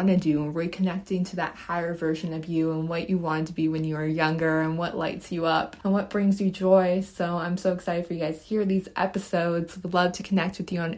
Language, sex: English, female